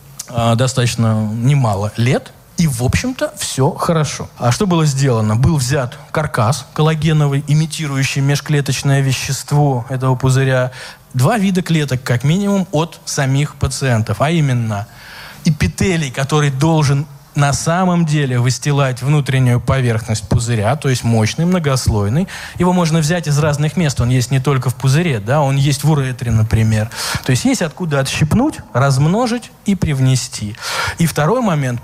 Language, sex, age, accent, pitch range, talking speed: Russian, male, 20-39, native, 120-150 Hz, 140 wpm